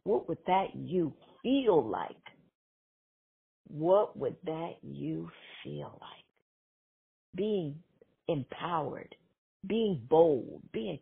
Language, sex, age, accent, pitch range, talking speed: English, female, 50-69, American, 165-245 Hz, 95 wpm